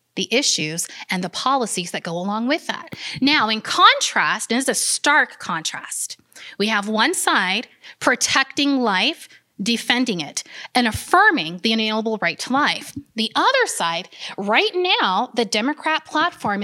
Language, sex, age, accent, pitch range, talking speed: English, female, 30-49, American, 215-295 Hz, 150 wpm